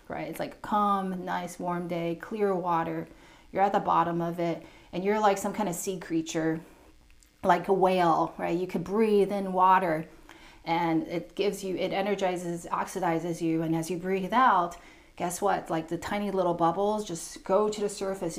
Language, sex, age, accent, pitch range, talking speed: English, female, 30-49, American, 170-205 Hz, 190 wpm